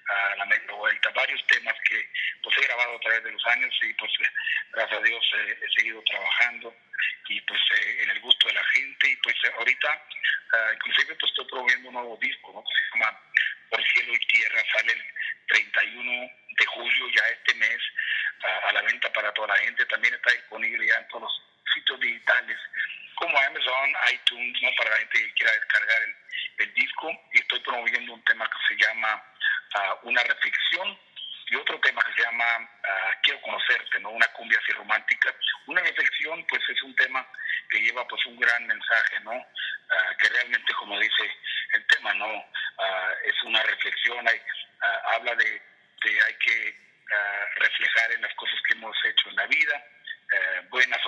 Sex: male